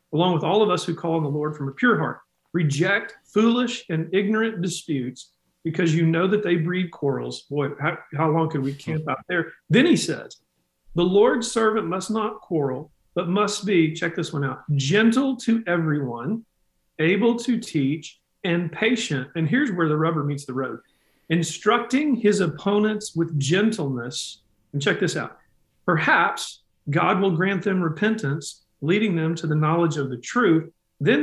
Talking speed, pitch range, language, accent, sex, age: 175 wpm, 150-200 Hz, English, American, male, 40-59